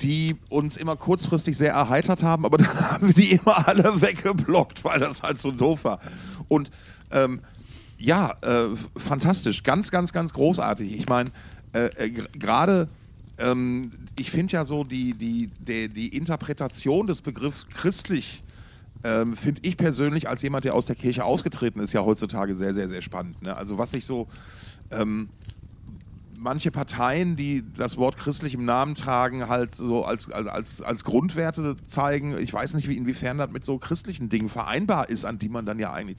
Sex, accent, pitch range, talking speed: male, German, 110-150 Hz, 175 wpm